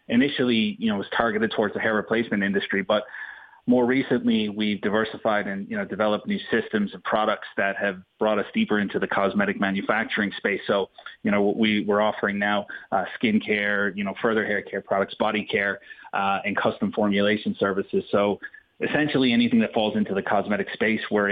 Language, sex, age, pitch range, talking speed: English, male, 30-49, 100-125 Hz, 185 wpm